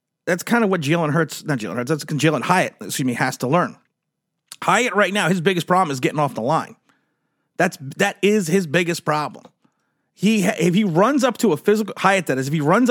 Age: 30-49